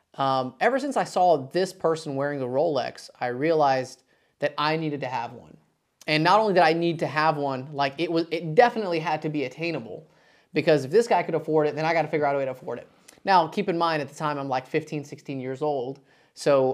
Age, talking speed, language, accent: 30-49, 245 wpm, English, American